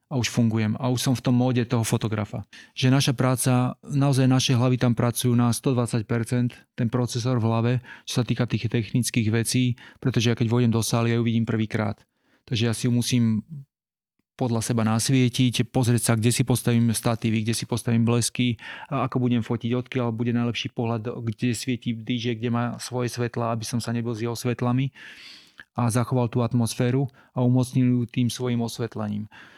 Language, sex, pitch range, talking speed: Slovak, male, 120-125 Hz, 185 wpm